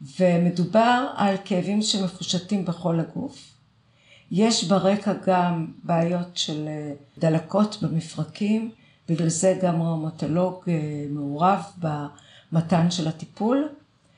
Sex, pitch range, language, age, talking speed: female, 165-195 Hz, Hebrew, 50-69, 90 wpm